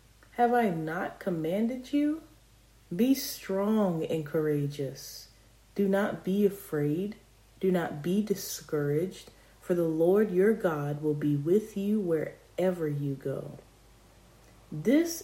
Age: 30-49